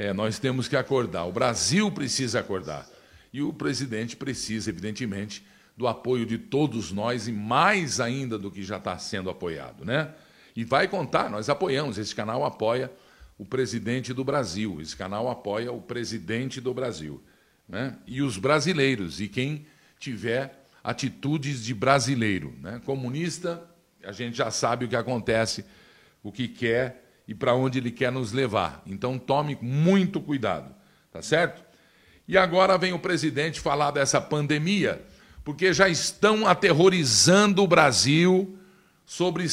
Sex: male